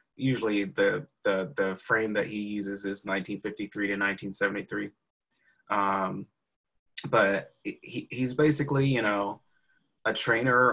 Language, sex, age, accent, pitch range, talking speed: English, male, 20-39, American, 100-115 Hz, 115 wpm